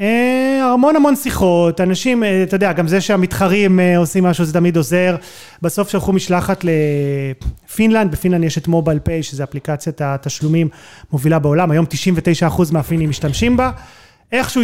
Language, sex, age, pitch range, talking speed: Hebrew, male, 30-49, 155-190 Hz, 135 wpm